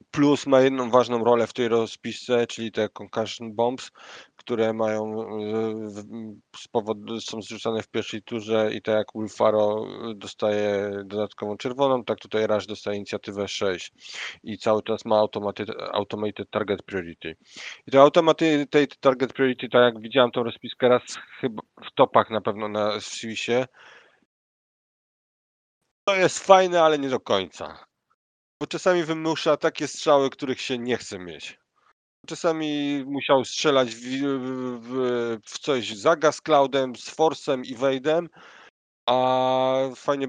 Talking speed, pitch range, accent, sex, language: 135 wpm, 105-130 Hz, native, male, Polish